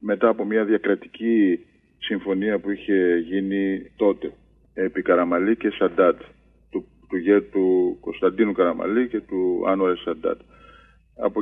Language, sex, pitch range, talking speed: Greek, male, 95-125 Hz, 130 wpm